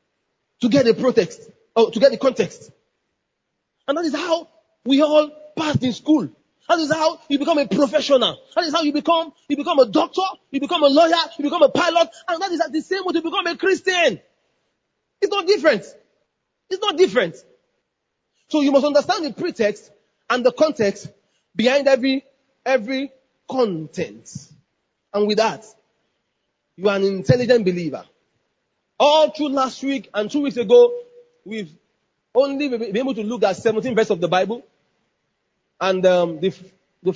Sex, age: male, 30-49